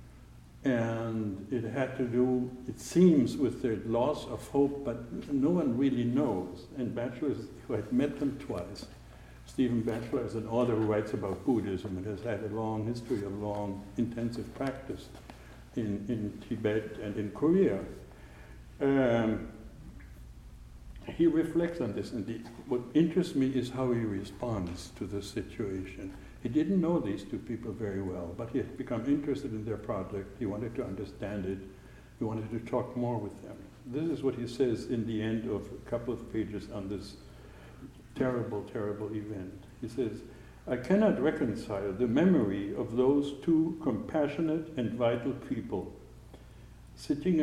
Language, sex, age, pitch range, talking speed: English, male, 60-79, 100-130 Hz, 160 wpm